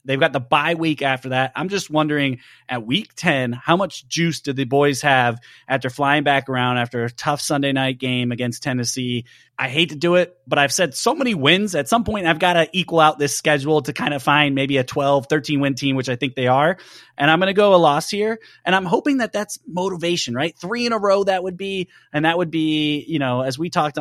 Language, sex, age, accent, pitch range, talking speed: English, male, 30-49, American, 130-175 Hz, 245 wpm